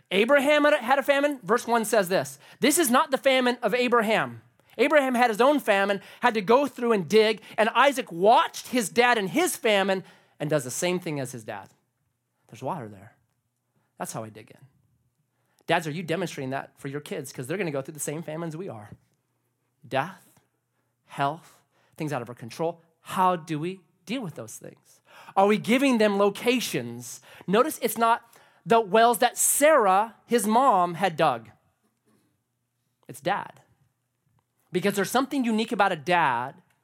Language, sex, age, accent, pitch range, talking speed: English, male, 30-49, American, 140-230 Hz, 175 wpm